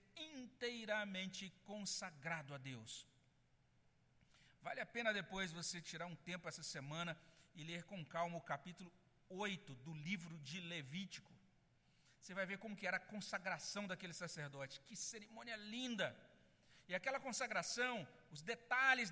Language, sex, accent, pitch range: Portuguese, male, Brazilian, 185-255 Hz